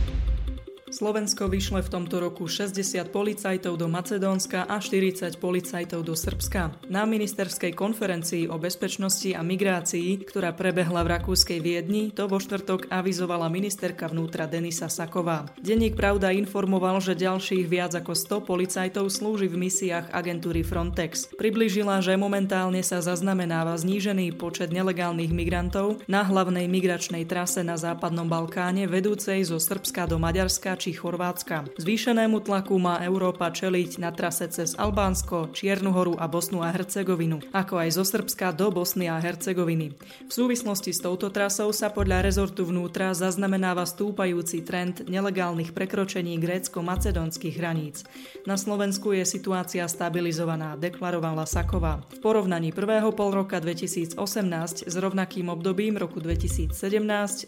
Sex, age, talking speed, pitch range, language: female, 20-39, 135 wpm, 170-195 Hz, Slovak